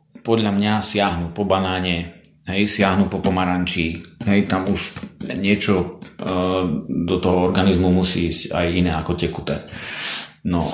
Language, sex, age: Slovak, male, 40-59